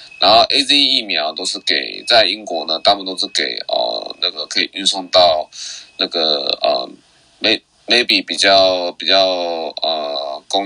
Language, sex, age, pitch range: Chinese, male, 20-39, 90-130 Hz